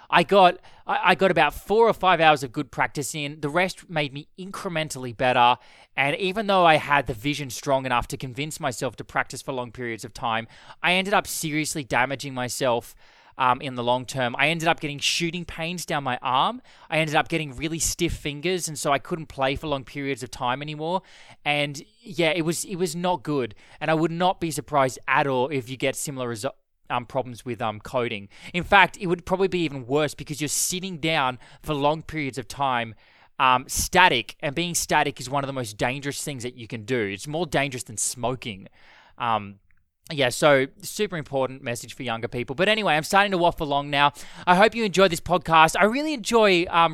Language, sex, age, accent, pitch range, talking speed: English, male, 20-39, Australian, 130-170 Hz, 215 wpm